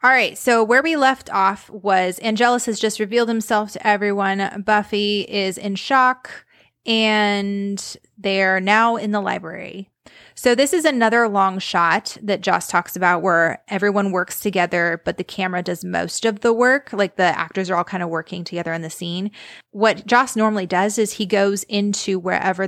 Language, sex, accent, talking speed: English, female, American, 180 wpm